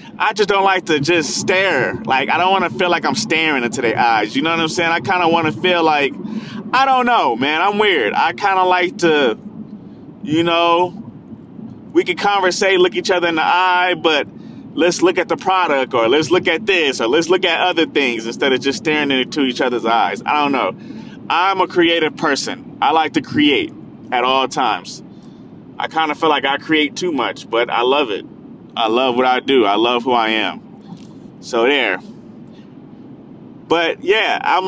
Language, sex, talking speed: English, male, 210 wpm